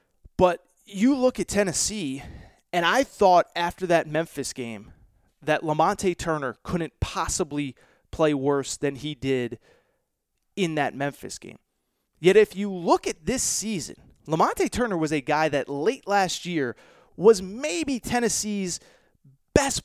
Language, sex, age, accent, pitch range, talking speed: English, male, 30-49, American, 155-210 Hz, 140 wpm